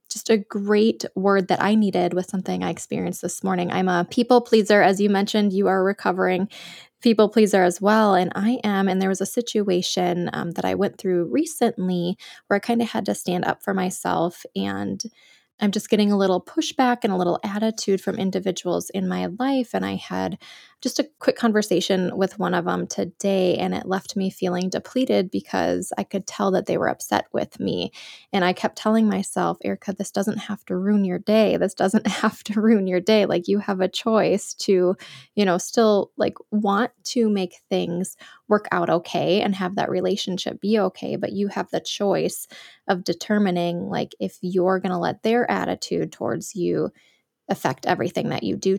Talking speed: 195 wpm